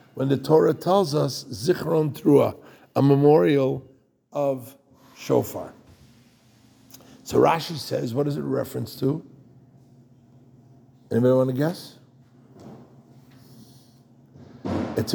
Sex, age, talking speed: male, 60-79, 95 wpm